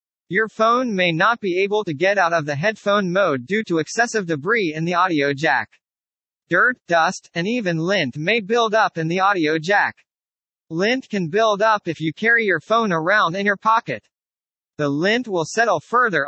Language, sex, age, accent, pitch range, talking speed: English, male, 40-59, American, 155-215 Hz, 190 wpm